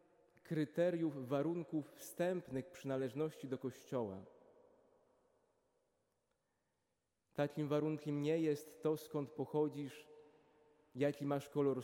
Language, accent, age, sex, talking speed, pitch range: Polish, native, 20-39, male, 80 wpm, 130-155 Hz